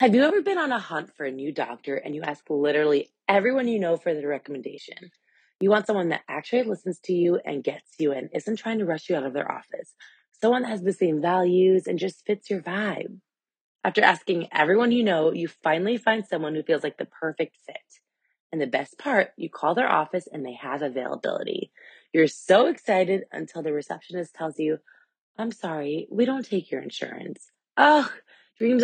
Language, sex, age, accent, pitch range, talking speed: English, female, 20-39, American, 155-225 Hz, 200 wpm